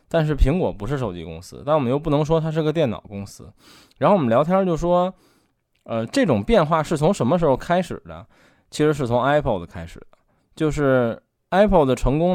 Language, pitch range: Chinese, 110-165 Hz